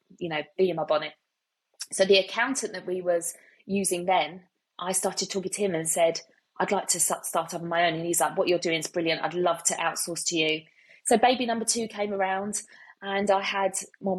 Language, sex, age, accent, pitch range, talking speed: English, female, 20-39, British, 180-215 Hz, 225 wpm